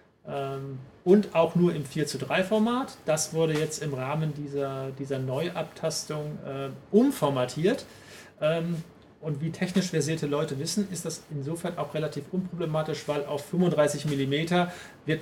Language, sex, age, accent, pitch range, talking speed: German, male, 40-59, German, 140-185 Hz, 140 wpm